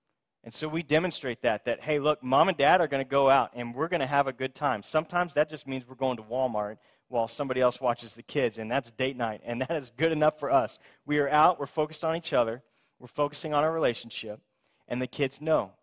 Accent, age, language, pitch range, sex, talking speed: American, 30-49, English, 120-155 Hz, male, 250 wpm